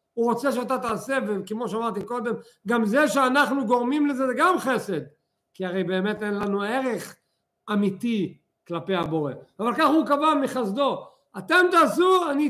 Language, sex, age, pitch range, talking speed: Hebrew, male, 50-69, 160-235 Hz, 155 wpm